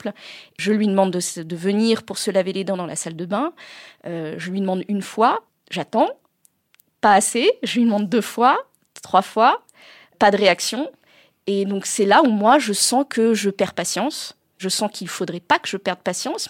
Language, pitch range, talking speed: French, 190-240 Hz, 205 wpm